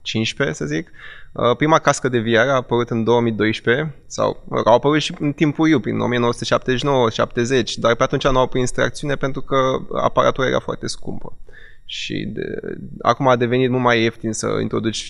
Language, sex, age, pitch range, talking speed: Romanian, male, 20-39, 115-135 Hz, 165 wpm